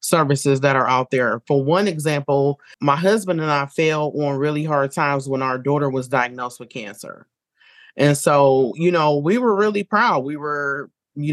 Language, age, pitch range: English, 30-49, 140-170 Hz